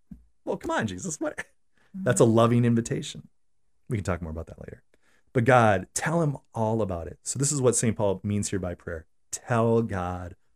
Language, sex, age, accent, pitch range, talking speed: English, male, 30-49, American, 95-125 Hz, 195 wpm